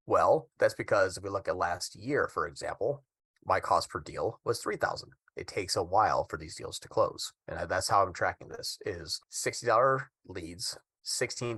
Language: English